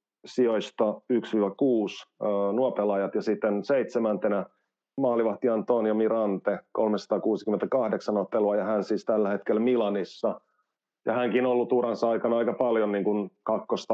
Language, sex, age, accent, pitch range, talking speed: Finnish, male, 30-49, native, 100-115 Hz, 120 wpm